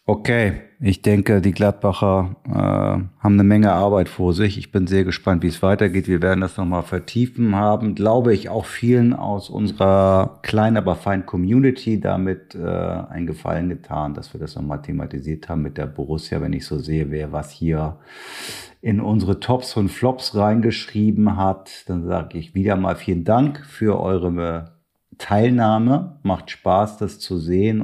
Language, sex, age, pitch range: German, male, 50-69, 85-105 Hz